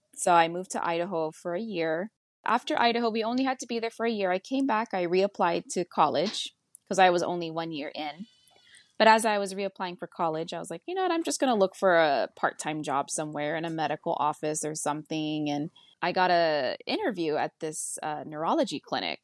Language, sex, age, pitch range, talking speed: English, female, 20-39, 160-200 Hz, 225 wpm